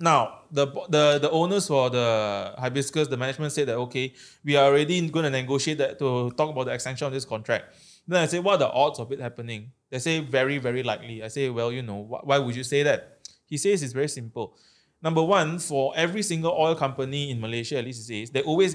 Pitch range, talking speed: 130-160 Hz, 235 wpm